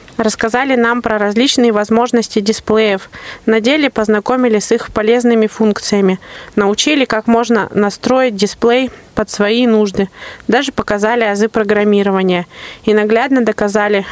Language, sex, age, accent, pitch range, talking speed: Russian, female, 20-39, native, 205-240 Hz, 120 wpm